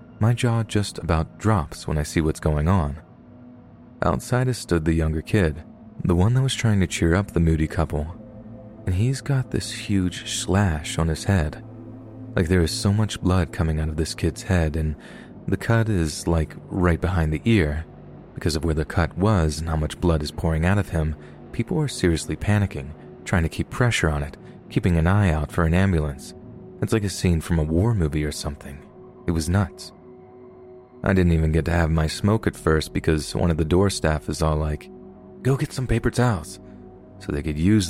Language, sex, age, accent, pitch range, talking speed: English, male, 30-49, American, 80-105 Hz, 205 wpm